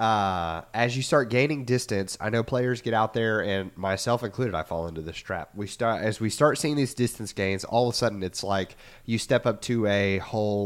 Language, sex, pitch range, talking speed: English, male, 95-115 Hz, 230 wpm